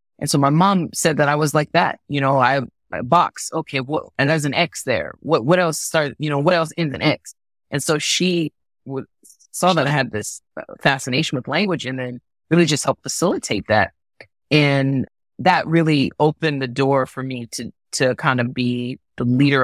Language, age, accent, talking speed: English, 20-39, American, 205 wpm